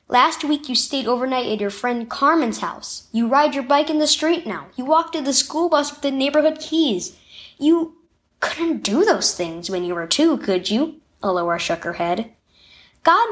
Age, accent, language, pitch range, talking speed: 10-29, American, English, 200-315 Hz, 200 wpm